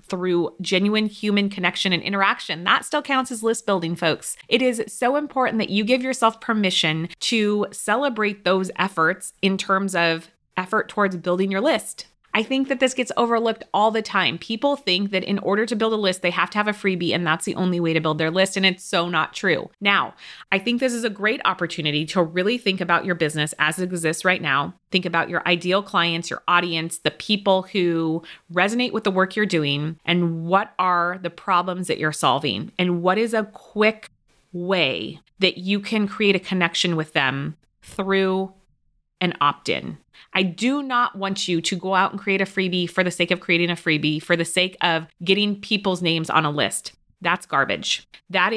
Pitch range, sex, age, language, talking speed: 170-210 Hz, female, 30-49, English, 205 wpm